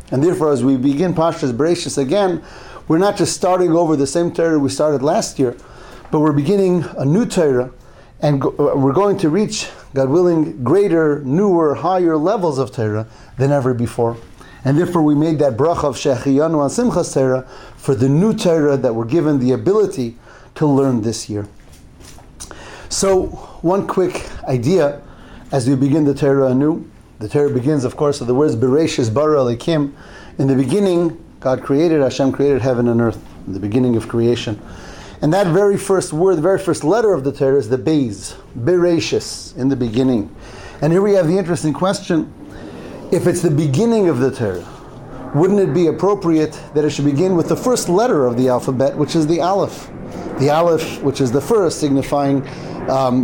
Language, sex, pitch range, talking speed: English, male, 130-170 Hz, 180 wpm